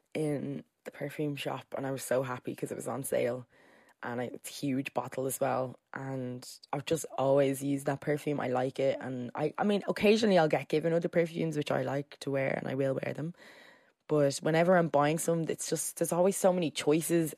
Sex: female